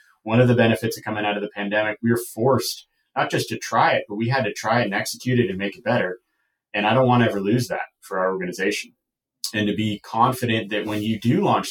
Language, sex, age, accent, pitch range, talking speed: English, male, 30-49, American, 105-120 Hz, 260 wpm